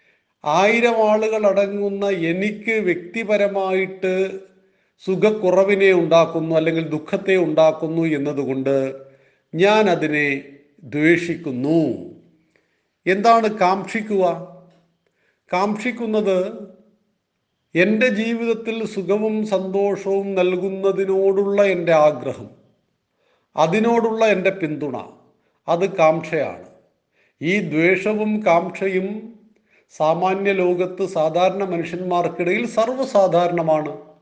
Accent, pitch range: native, 165-200 Hz